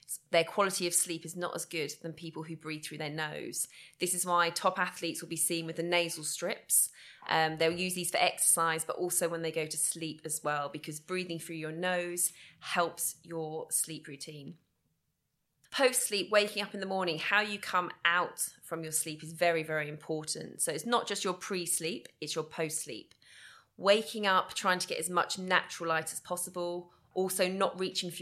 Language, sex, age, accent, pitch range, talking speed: English, female, 20-39, British, 160-180 Hz, 195 wpm